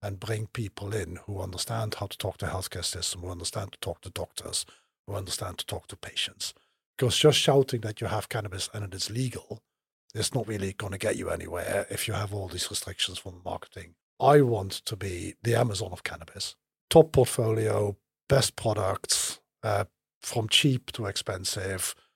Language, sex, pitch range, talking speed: English, male, 95-120 Hz, 185 wpm